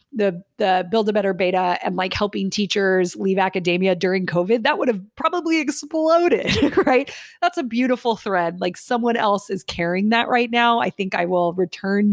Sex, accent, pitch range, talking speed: female, American, 175-220 Hz, 185 wpm